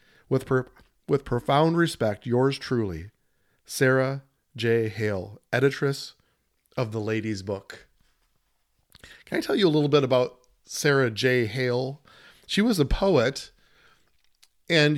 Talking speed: 125 wpm